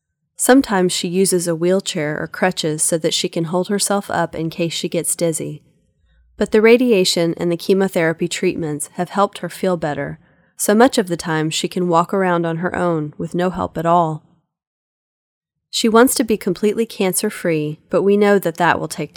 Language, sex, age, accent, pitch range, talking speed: English, female, 30-49, American, 160-205 Hz, 190 wpm